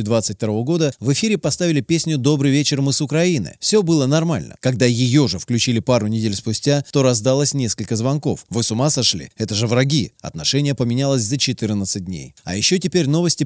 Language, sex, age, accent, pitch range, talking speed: Russian, male, 30-49, native, 115-150 Hz, 185 wpm